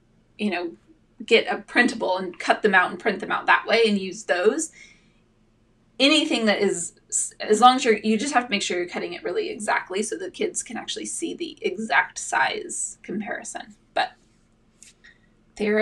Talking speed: 180 wpm